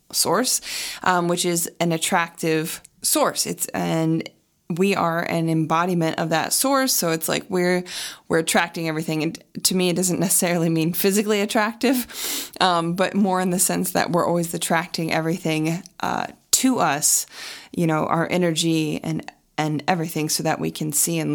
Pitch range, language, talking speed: 165-190 Hz, English, 165 wpm